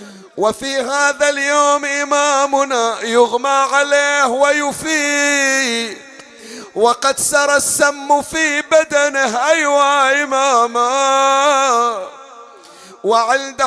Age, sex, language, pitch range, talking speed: 50-69, male, Arabic, 220-275 Hz, 65 wpm